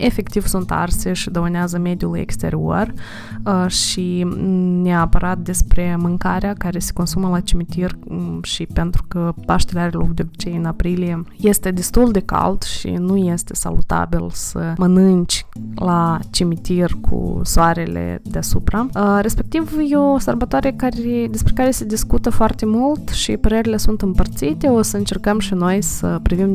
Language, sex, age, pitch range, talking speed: Romanian, female, 20-39, 170-215 Hz, 140 wpm